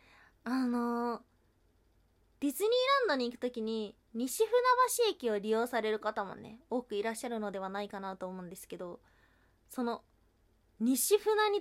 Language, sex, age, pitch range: Japanese, female, 20-39, 220-345 Hz